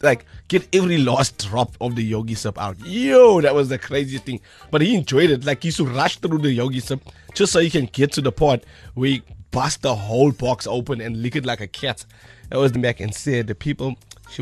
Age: 30-49